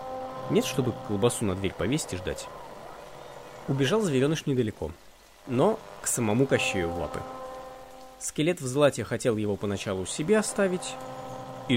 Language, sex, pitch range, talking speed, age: Russian, male, 95-140 Hz, 135 wpm, 20-39